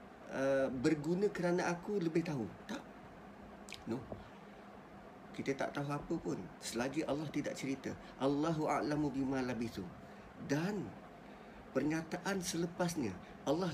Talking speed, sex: 110 wpm, male